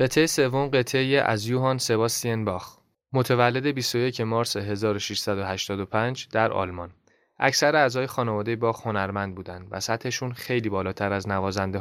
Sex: male